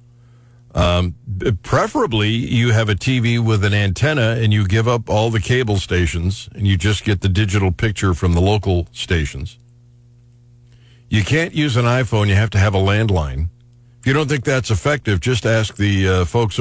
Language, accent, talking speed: English, American, 180 wpm